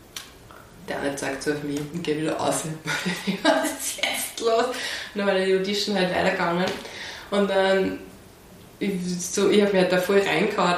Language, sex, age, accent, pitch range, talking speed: German, female, 20-39, German, 175-200 Hz, 185 wpm